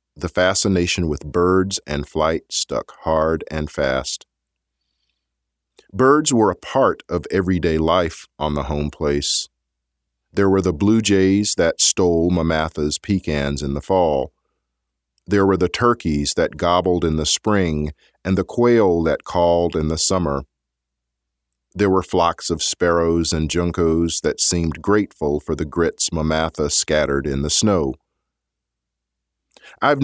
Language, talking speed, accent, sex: English, 140 wpm, American, male